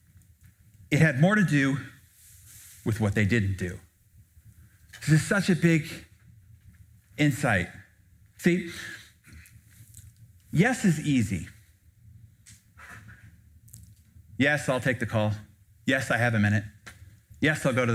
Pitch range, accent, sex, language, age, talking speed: 100-155 Hz, American, male, English, 30-49, 115 wpm